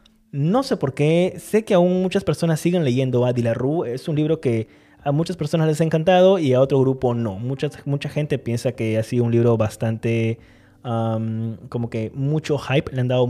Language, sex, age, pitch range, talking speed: Spanish, male, 20-39, 125-165 Hz, 205 wpm